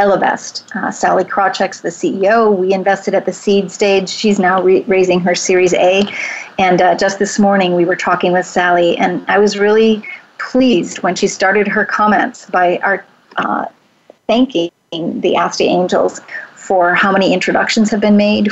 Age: 40-59